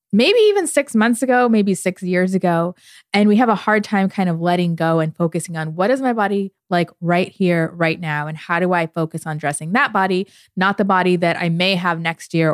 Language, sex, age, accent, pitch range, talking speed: English, female, 20-39, American, 165-200 Hz, 235 wpm